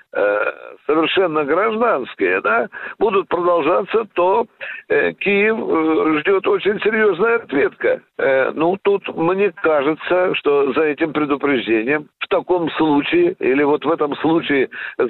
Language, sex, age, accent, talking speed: Russian, male, 60-79, native, 105 wpm